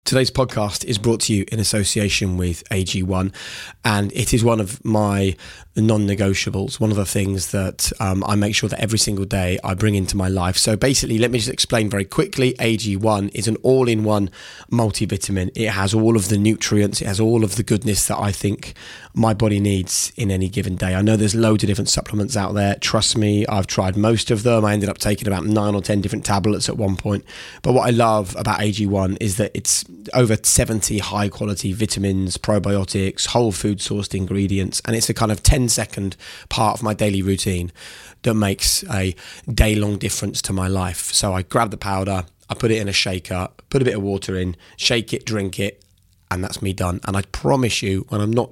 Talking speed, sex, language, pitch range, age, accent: 210 wpm, male, English, 95-110 Hz, 20-39, British